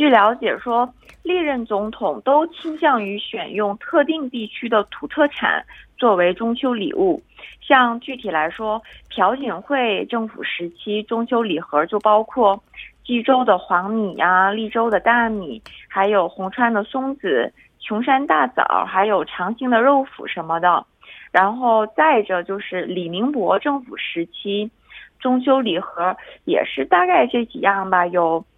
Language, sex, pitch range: Korean, female, 195-265 Hz